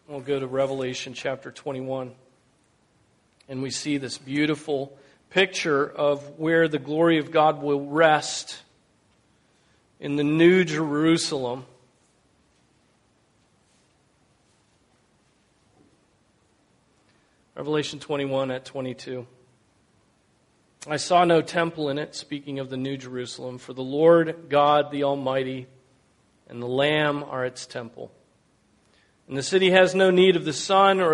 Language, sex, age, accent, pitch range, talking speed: English, male, 40-59, American, 130-150 Hz, 120 wpm